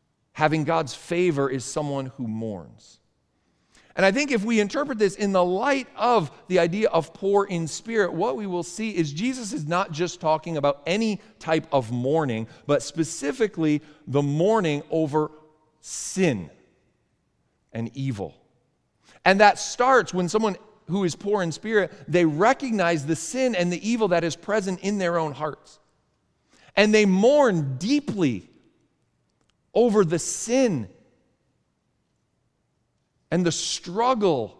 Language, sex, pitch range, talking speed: English, male, 155-220 Hz, 140 wpm